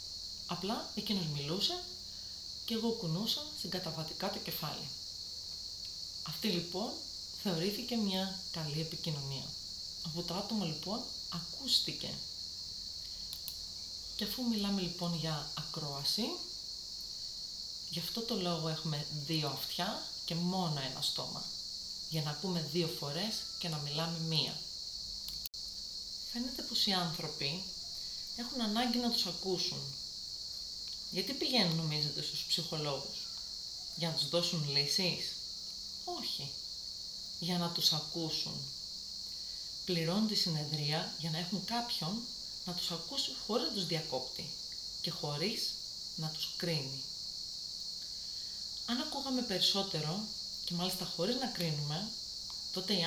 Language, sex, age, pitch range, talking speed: Greek, female, 30-49, 150-195 Hz, 115 wpm